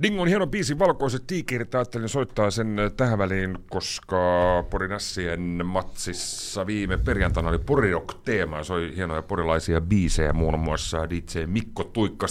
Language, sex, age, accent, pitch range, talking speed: Finnish, male, 40-59, native, 95-140 Hz, 130 wpm